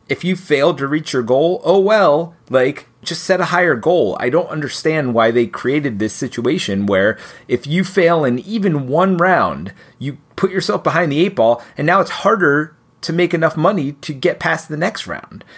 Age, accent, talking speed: 30-49, American, 200 wpm